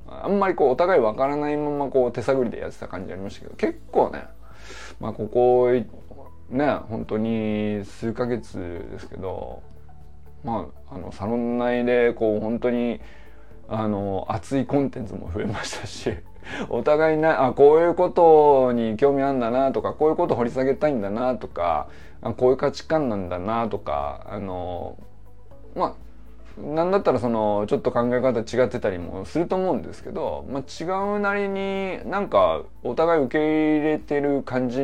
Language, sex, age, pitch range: Japanese, male, 20-39, 105-145 Hz